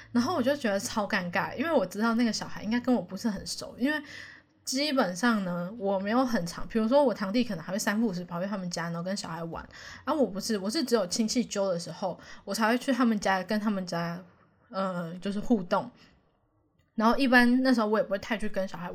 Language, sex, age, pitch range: Chinese, female, 10-29, 190-245 Hz